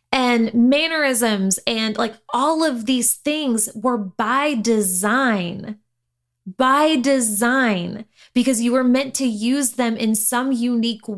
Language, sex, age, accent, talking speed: English, female, 20-39, American, 125 wpm